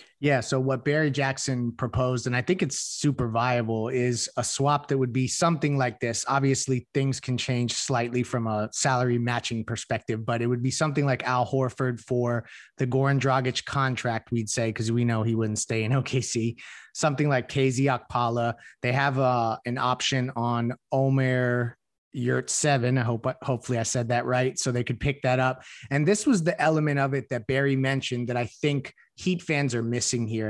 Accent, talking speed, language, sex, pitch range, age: American, 195 wpm, English, male, 120-140 Hz, 30-49